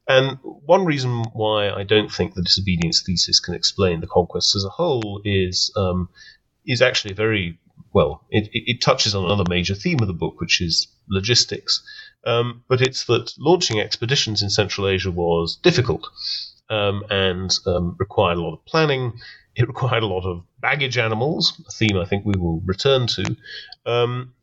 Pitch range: 95-130 Hz